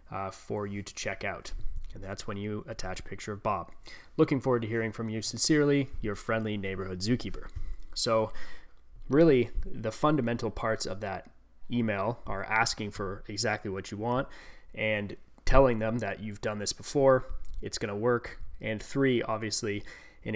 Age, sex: 20-39, male